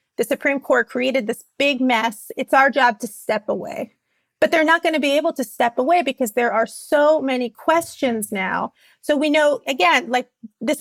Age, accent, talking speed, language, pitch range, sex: 30-49, American, 200 wpm, English, 240-290 Hz, female